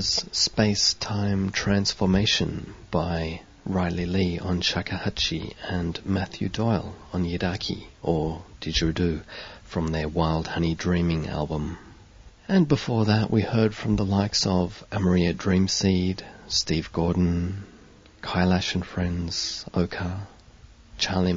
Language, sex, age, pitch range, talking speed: English, male, 40-59, 85-100 Hz, 105 wpm